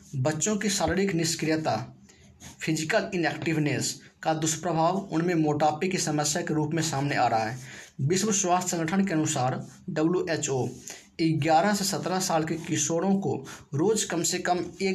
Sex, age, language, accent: male, 20-39, English, Indian